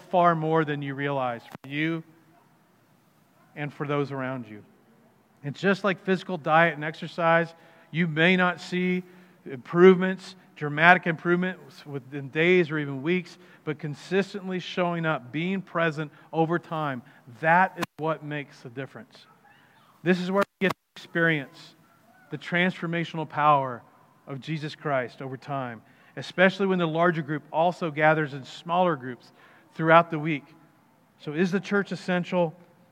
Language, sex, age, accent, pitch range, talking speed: English, male, 40-59, American, 150-180 Hz, 140 wpm